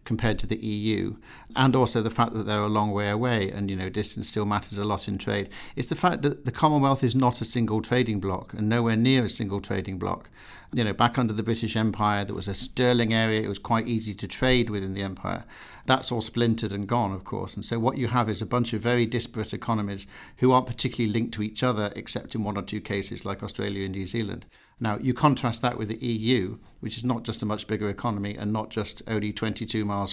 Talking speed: 245 wpm